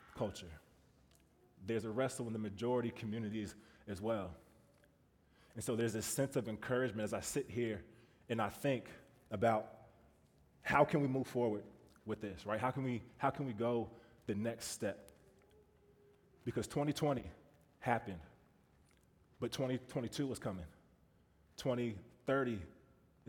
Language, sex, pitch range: English, male, 100-125 Hz